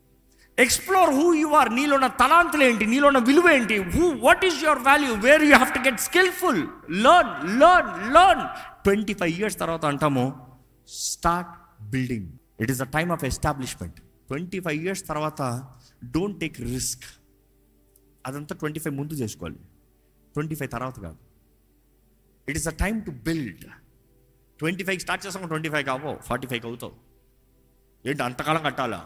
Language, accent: Telugu, native